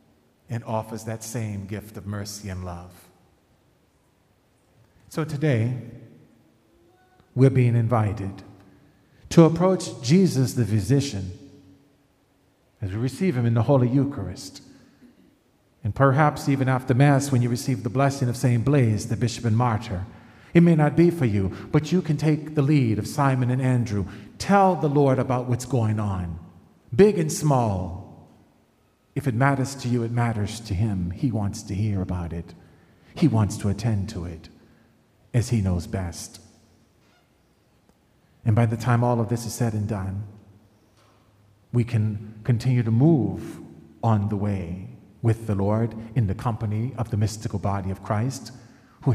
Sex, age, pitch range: male, 40-59, 100-130 Hz